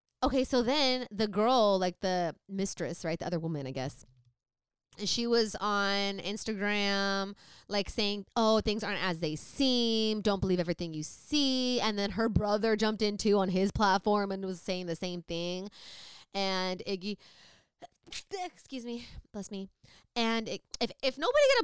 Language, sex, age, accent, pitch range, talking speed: English, female, 20-39, American, 180-245 Hz, 170 wpm